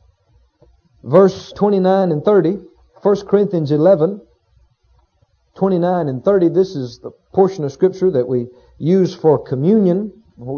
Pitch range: 155-210 Hz